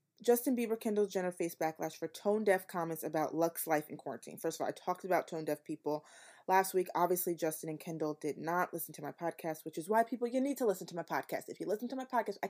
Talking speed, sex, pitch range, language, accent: 250 wpm, female, 165-210 Hz, English, American